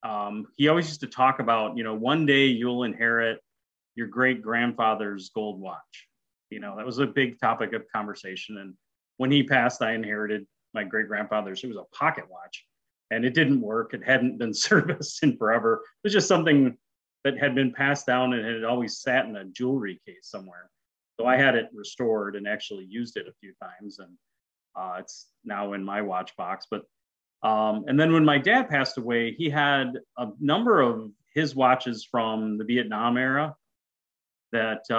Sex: male